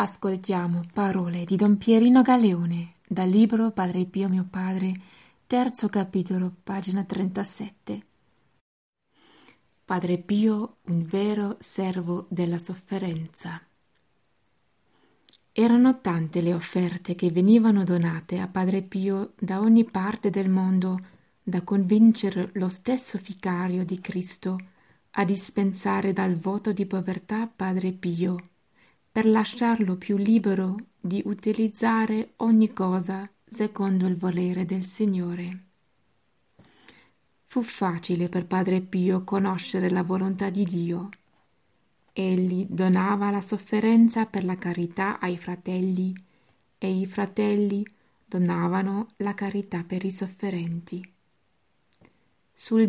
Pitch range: 180-205 Hz